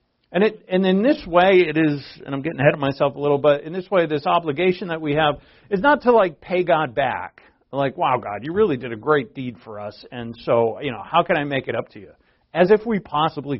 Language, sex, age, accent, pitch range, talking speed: English, male, 50-69, American, 145-215 Hz, 260 wpm